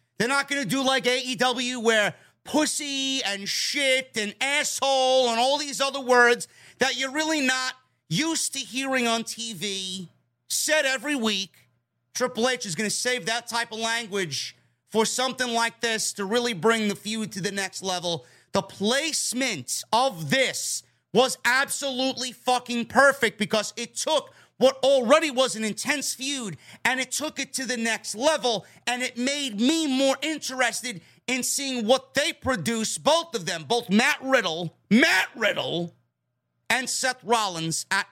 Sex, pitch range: male, 190-260 Hz